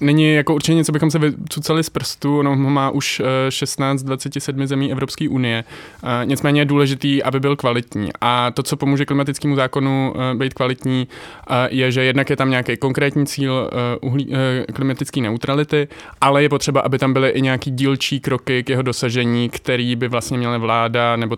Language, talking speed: Czech, 165 wpm